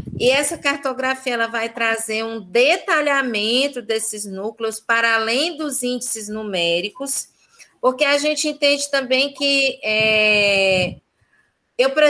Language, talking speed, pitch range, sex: Portuguese, 115 wpm, 210-275 Hz, female